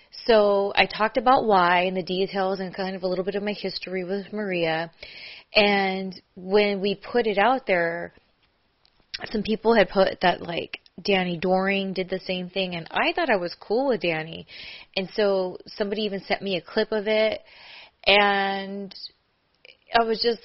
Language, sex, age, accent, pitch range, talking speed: English, female, 20-39, American, 175-210 Hz, 175 wpm